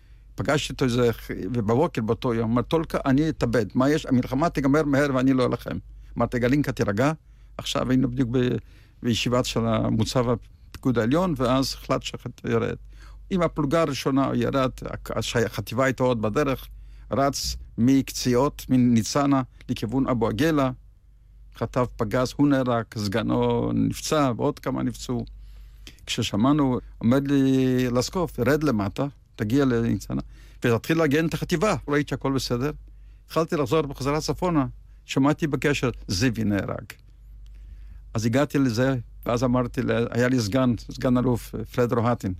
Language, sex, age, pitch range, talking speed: Hebrew, male, 50-69, 115-135 Hz, 125 wpm